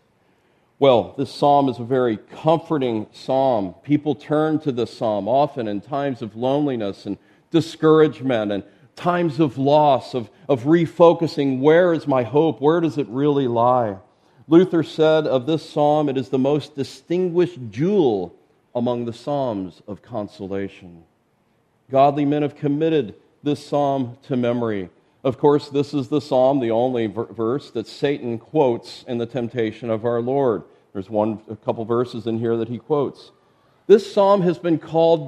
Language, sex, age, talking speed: English, male, 40-59, 160 wpm